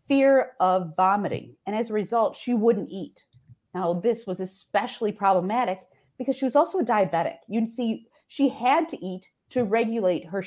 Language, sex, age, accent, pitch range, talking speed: English, female, 40-59, American, 185-260 Hz, 170 wpm